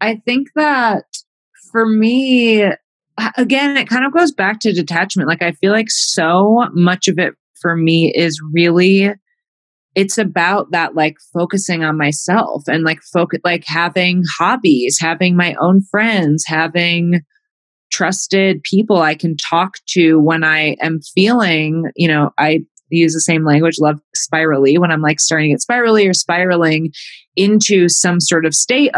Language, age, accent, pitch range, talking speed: English, 20-39, American, 160-200 Hz, 155 wpm